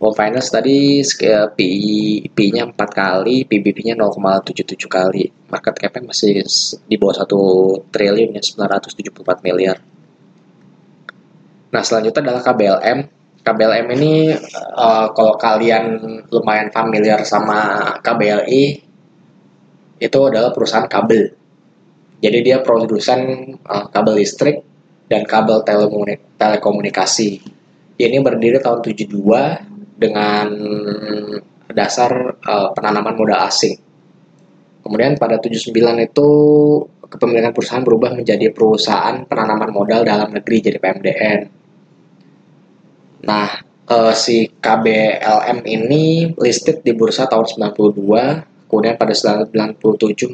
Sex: male